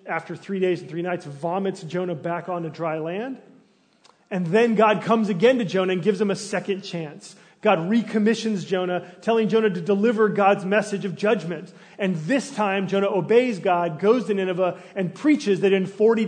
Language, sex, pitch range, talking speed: English, male, 165-205 Hz, 185 wpm